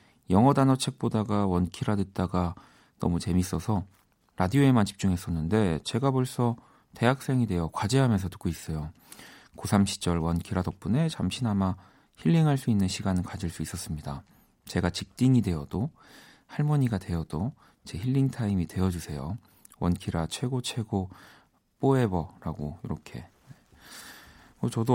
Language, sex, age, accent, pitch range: Korean, male, 40-59, native, 90-120 Hz